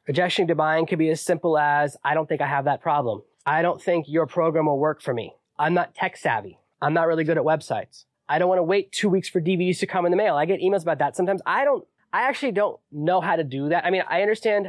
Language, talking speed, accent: English, 280 wpm, American